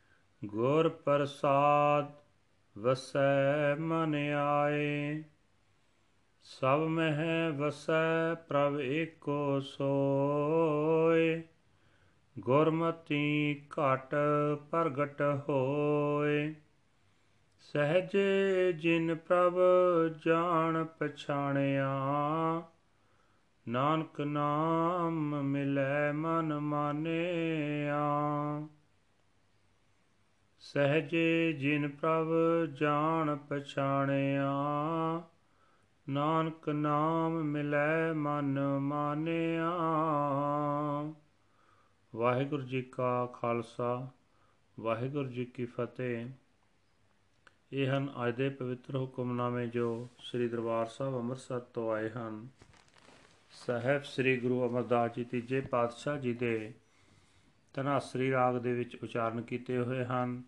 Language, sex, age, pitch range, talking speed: Punjabi, male, 40-59, 120-150 Hz, 70 wpm